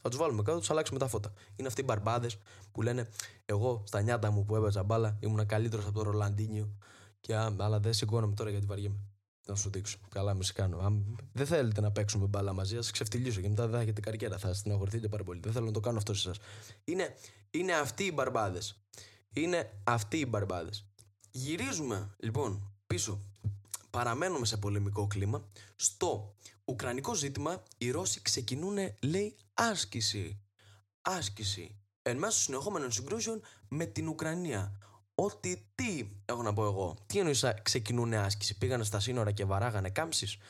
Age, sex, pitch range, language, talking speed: 20-39, male, 100-115 Hz, Greek, 165 wpm